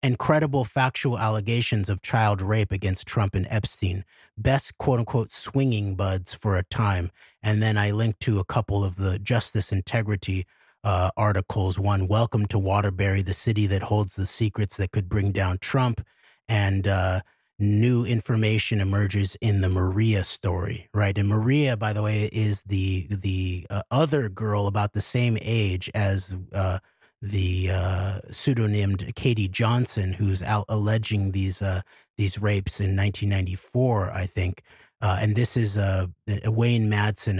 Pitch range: 95-110 Hz